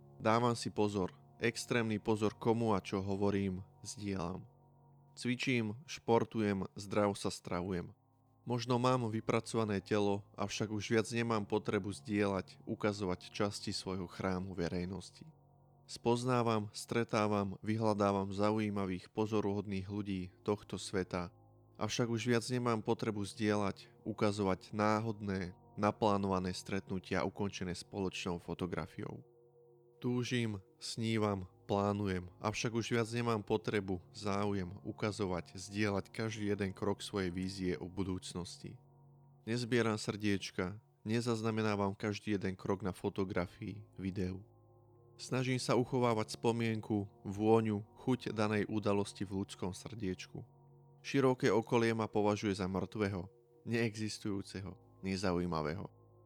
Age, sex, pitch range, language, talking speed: 20-39, male, 95-115 Hz, Slovak, 105 wpm